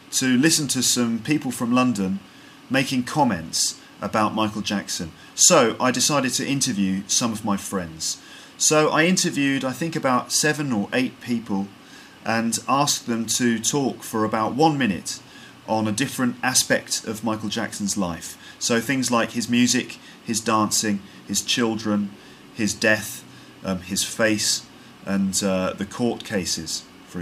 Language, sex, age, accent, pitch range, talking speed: English, male, 30-49, British, 100-130 Hz, 150 wpm